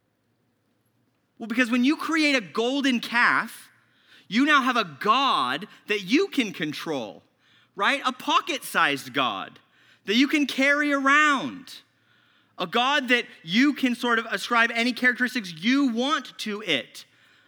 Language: English